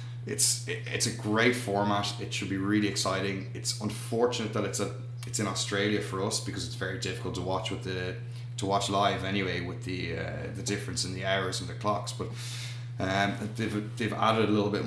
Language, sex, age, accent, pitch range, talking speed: English, male, 20-39, Irish, 100-120 Hz, 205 wpm